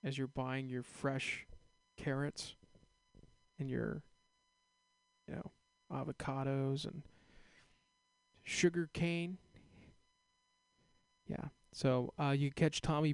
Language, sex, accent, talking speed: English, male, American, 90 wpm